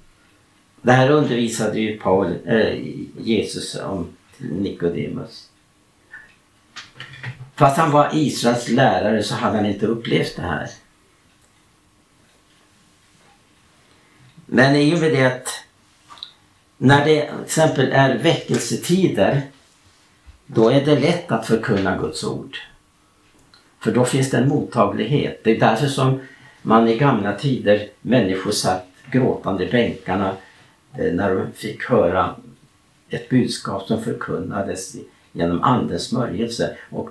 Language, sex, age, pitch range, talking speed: Swedish, male, 60-79, 105-135 Hz, 110 wpm